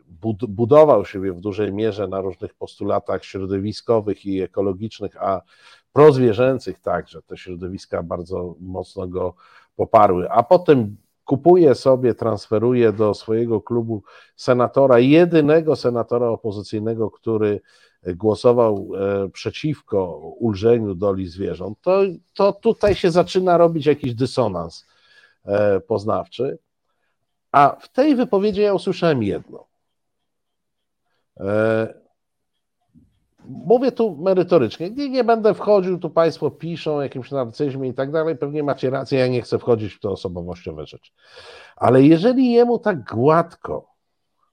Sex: male